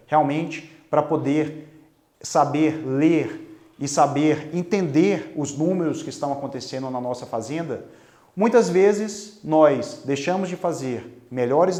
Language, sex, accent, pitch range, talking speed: Portuguese, male, Brazilian, 140-175 Hz, 115 wpm